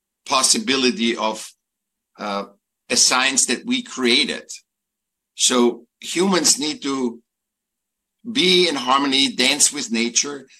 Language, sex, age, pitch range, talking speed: French, male, 60-79, 115-135 Hz, 100 wpm